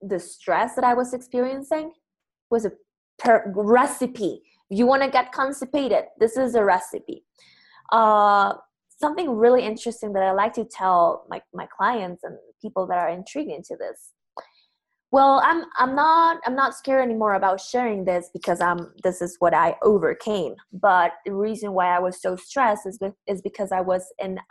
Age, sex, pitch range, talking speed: 20-39, female, 190-250 Hz, 170 wpm